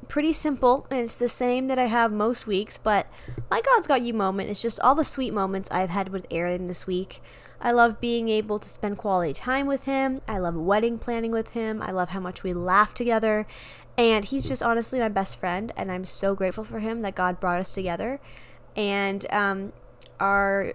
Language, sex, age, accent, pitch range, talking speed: English, female, 10-29, American, 195-265 Hz, 210 wpm